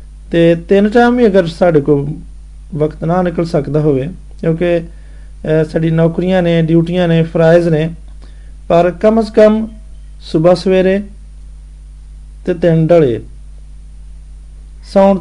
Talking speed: 105 wpm